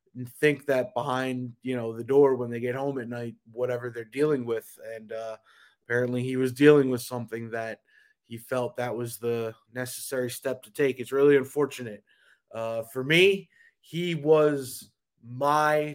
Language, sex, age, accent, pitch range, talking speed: English, male, 20-39, American, 120-135 Hz, 170 wpm